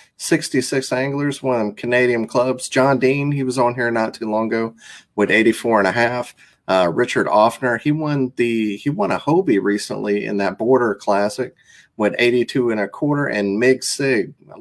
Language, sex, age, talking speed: English, male, 30-49, 180 wpm